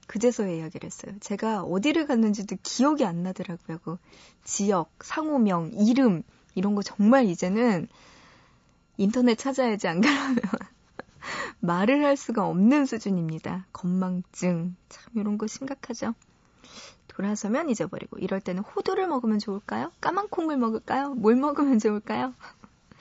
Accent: native